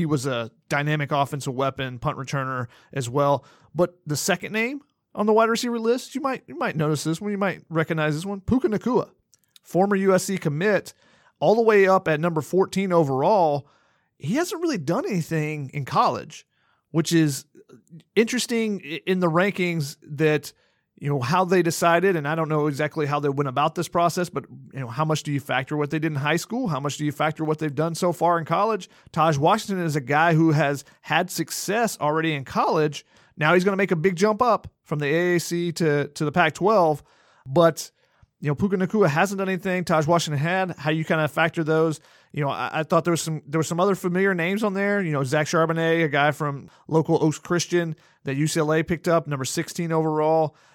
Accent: American